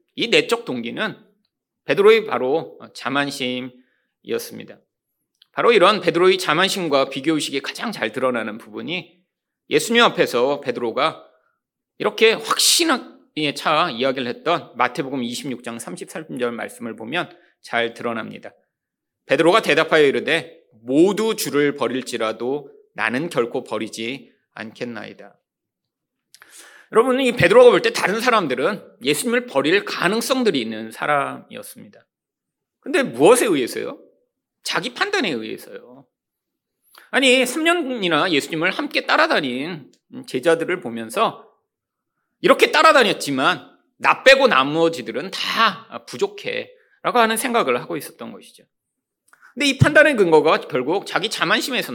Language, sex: Korean, male